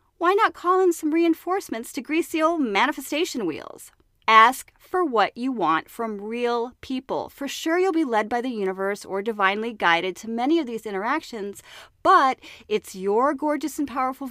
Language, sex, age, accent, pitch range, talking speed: English, female, 30-49, American, 205-300 Hz, 175 wpm